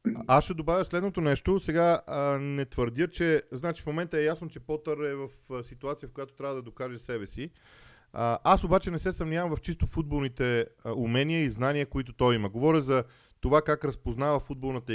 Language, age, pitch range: Bulgarian, 40-59, 120-160 Hz